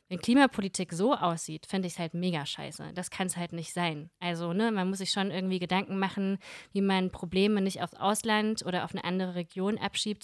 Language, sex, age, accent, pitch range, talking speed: German, female, 20-39, German, 175-205 Hz, 215 wpm